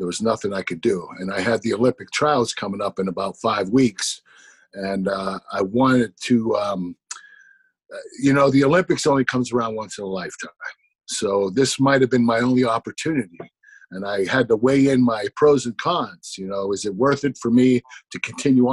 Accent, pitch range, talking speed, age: American, 115-140 Hz, 200 wpm, 50-69